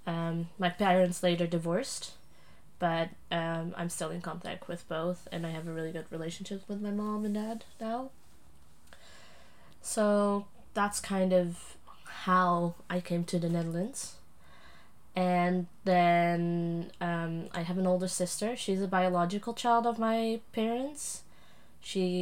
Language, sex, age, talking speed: English, female, 20-39, 140 wpm